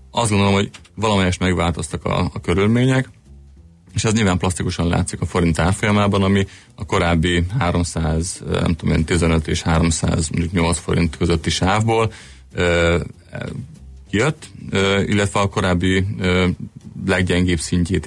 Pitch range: 85-100 Hz